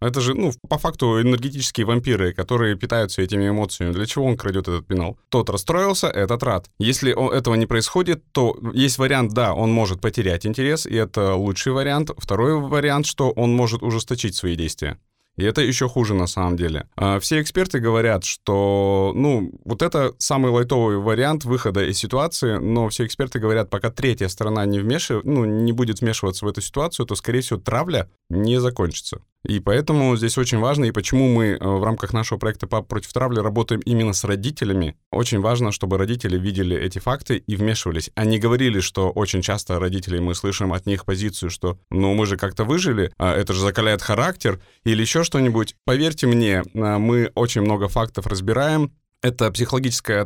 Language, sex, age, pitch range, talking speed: Russian, male, 20-39, 100-125 Hz, 175 wpm